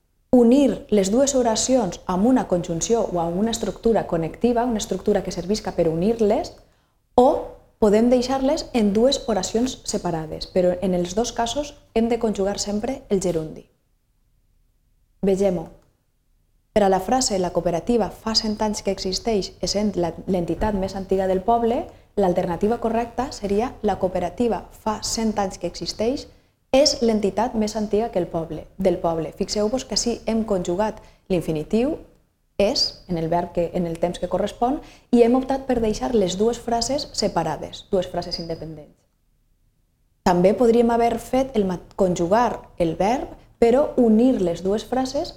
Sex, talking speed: female, 155 wpm